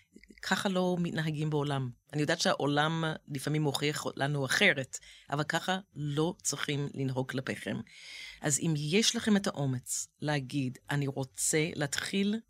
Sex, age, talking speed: female, 40-59, 130 wpm